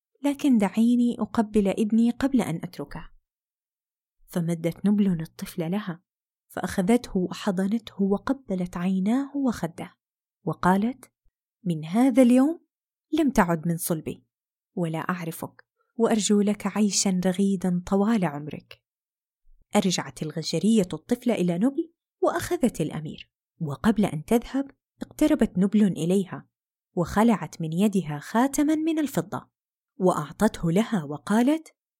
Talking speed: 100 wpm